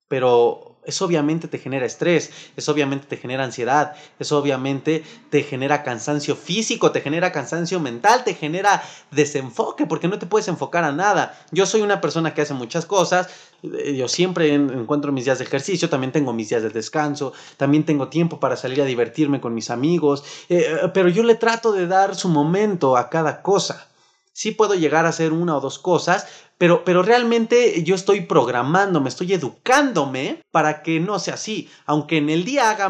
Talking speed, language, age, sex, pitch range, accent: 185 wpm, Spanish, 30-49, male, 150-195 Hz, Mexican